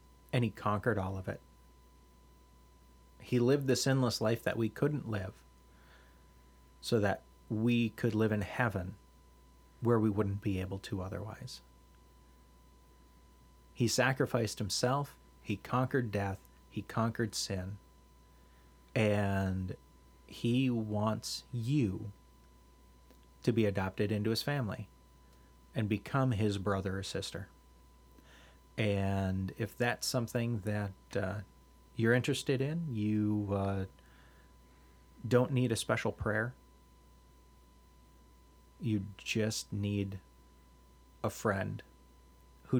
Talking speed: 105 wpm